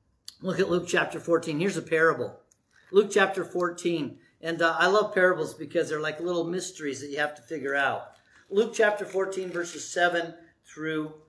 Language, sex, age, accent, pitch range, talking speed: English, male, 50-69, American, 175-240 Hz, 175 wpm